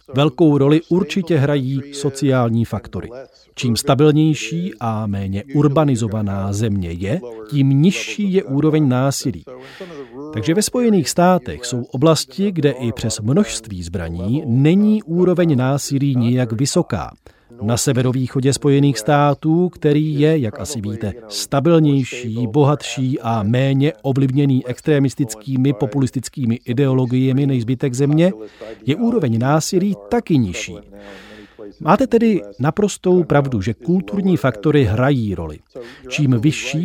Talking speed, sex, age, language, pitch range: 115 wpm, male, 40-59, Czech, 115-150 Hz